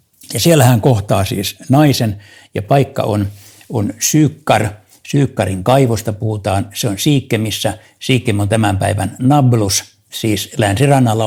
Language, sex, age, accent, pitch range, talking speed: Finnish, male, 60-79, native, 105-130 Hz, 130 wpm